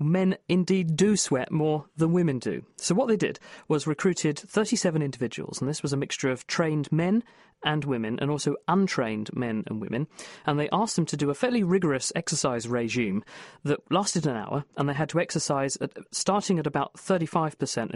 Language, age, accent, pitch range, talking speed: English, 40-59, British, 135-175 Hz, 185 wpm